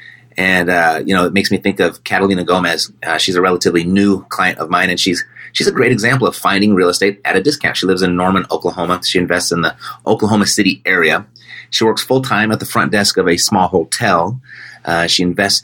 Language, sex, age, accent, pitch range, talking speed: English, male, 30-49, American, 90-115 Hz, 225 wpm